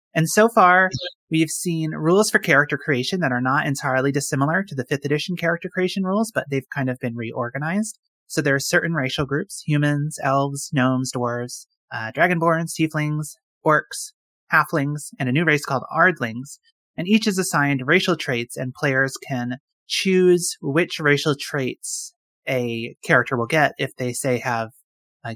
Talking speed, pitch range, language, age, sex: 165 wpm, 130-175 Hz, English, 30-49, male